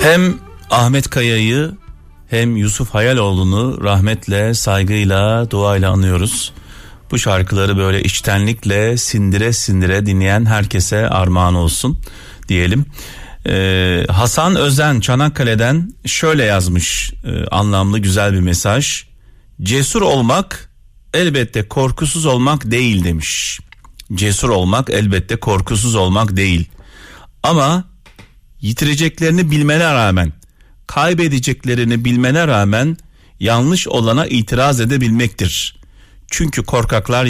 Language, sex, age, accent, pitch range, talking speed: Turkish, male, 40-59, native, 95-130 Hz, 95 wpm